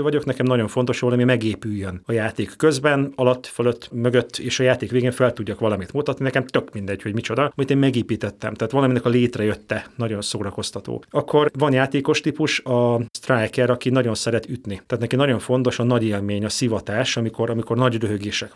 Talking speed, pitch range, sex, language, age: 190 wpm, 110-135 Hz, male, Hungarian, 30-49